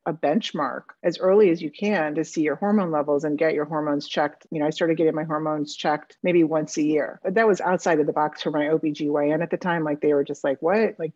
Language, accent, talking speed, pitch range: English, American, 265 wpm, 150-170 Hz